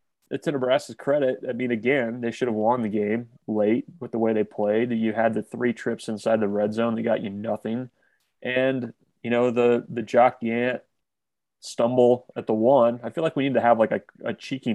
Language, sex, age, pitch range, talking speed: English, male, 20-39, 110-120 Hz, 215 wpm